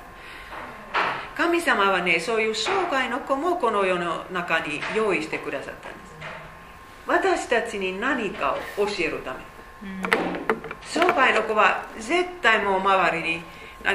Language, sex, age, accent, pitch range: Japanese, female, 40-59, Finnish, 170-255 Hz